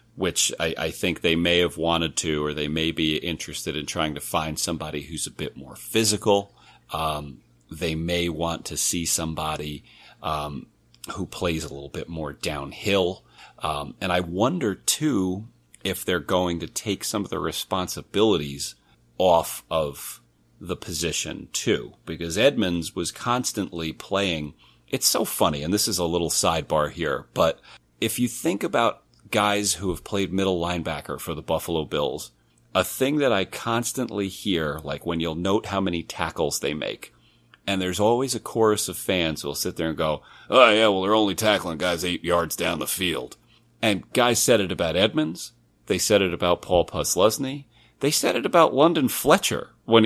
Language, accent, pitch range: English, American, 75-100 Hz